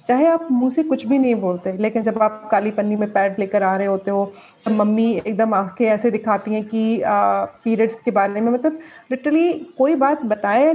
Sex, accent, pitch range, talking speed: female, native, 220-280 Hz, 210 wpm